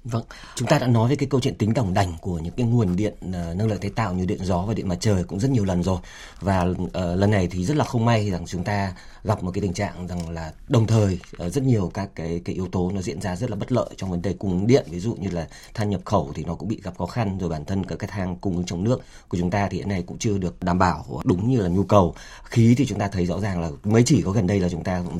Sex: male